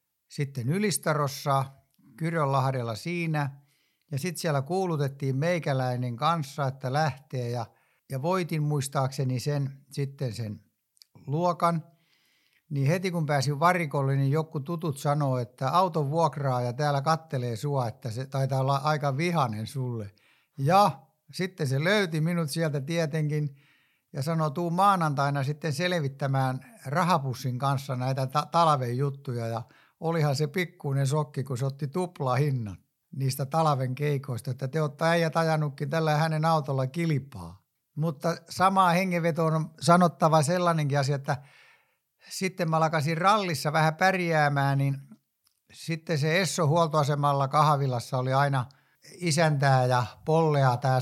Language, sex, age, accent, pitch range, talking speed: Finnish, male, 60-79, native, 135-165 Hz, 125 wpm